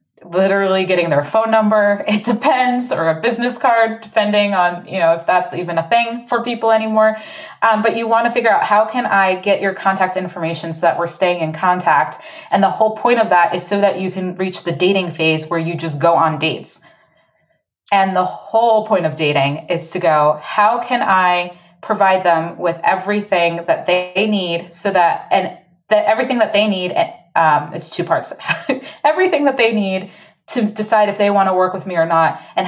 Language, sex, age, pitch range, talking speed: English, female, 20-39, 170-210 Hz, 205 wpm